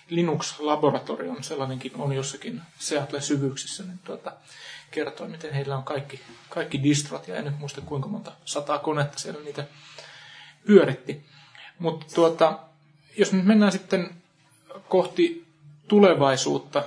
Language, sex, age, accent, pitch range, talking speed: Finnish, male, 30-49, native, 140-165 Hz, 125 wpm